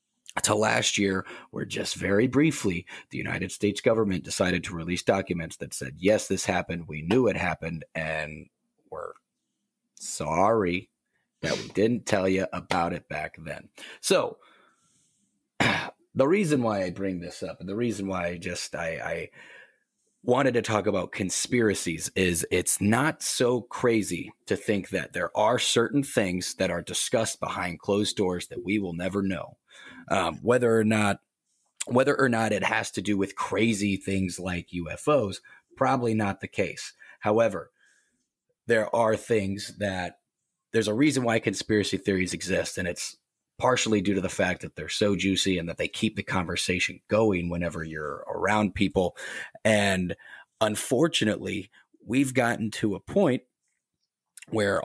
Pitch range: 90-110 Hz